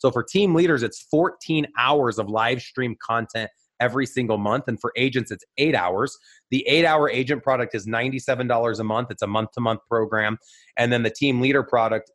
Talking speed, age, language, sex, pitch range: 190 wpm, 30-49, English, male, 110-135 Hz